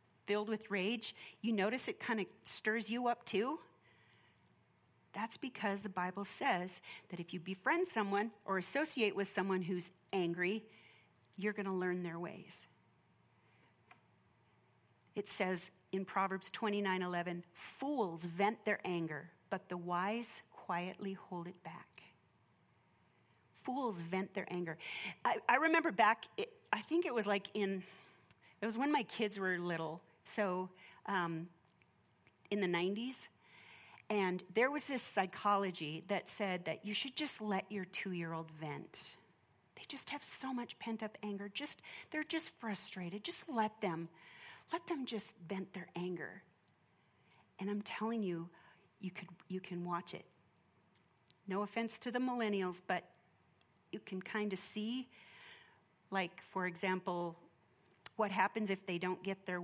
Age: 40-59